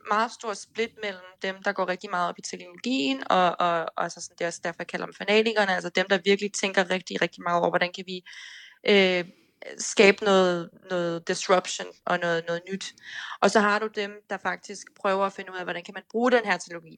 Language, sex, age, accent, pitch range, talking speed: Danish, female, 20-39, native, 175-205 Hz, 215 wpm